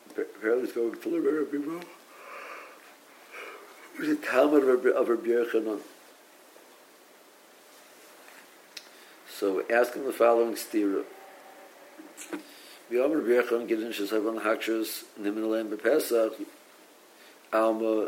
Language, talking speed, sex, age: English, 90 wpm, male, 50-69